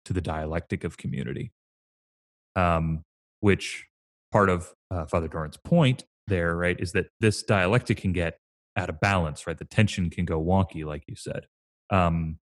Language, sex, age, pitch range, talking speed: English, male, 30-49, 85-110 Hz, 165 wpm